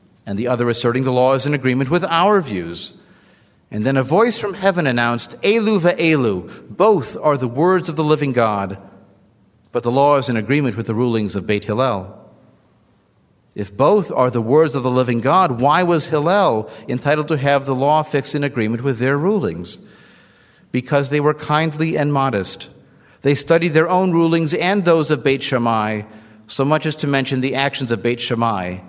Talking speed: 185 wpm